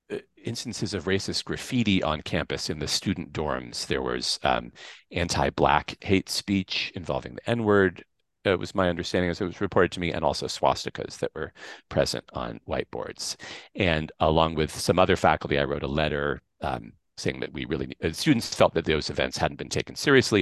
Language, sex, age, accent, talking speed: English, male, 40-59, American, 180 wpm